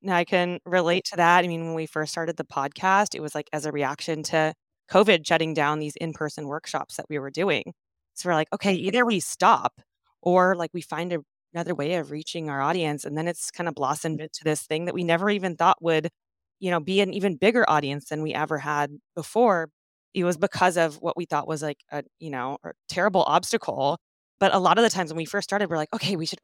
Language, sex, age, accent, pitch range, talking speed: English, female, 20-39, American, 150-185 Hz, 240 wpm